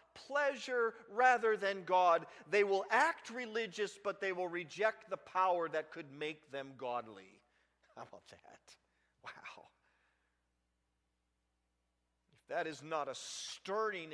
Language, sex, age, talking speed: English, male, 40-59, 125 wpm